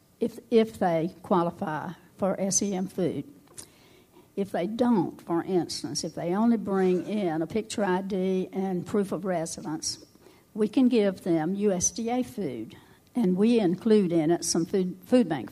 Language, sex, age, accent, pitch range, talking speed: English, female, 60-79, American, 170-210 Hz, 150 wpm